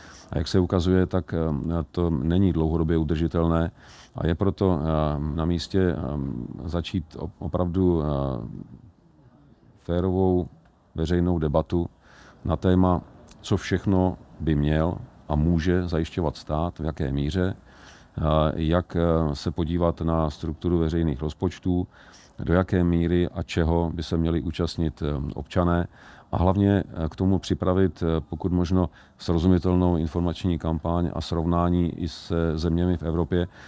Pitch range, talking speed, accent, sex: 80-90 Hz, 120 wpm, native, male